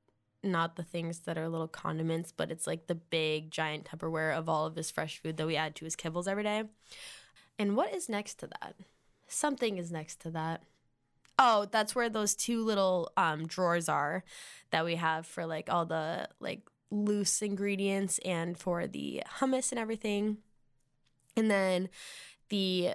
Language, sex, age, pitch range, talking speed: English, female, 10-29, 165-205 Hz, 175 wpm